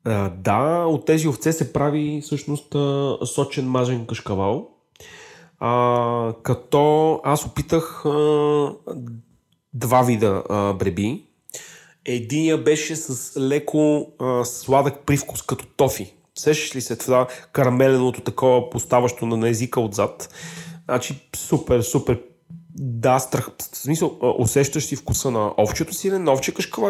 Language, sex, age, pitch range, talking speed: Bulgarian, male, 30-49, 115-155 Hz, 125 wpm